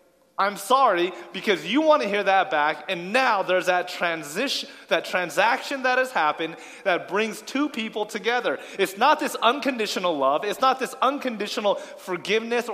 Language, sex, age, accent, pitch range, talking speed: English, male, 30-49, American, 180-260 Hz, 160 wpm